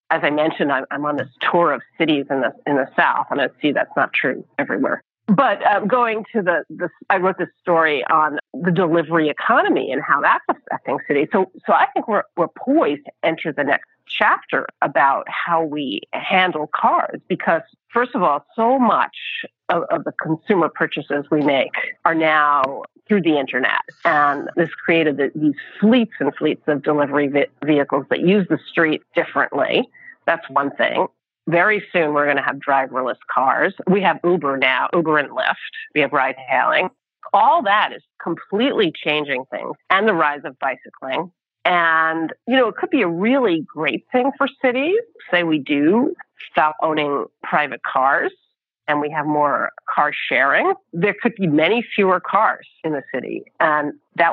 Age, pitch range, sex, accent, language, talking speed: 40-59, 150-225 Hz, female, American, English, 180 wpm